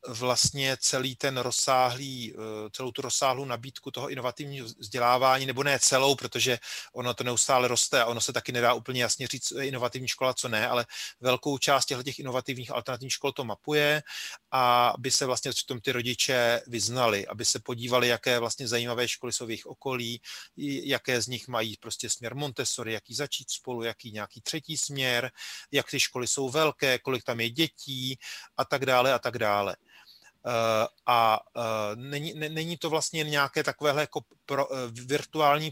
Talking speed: 170 wpm